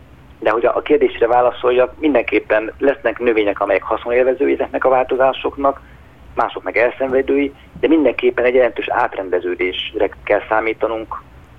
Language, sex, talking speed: Hungarian, male, 120 wpm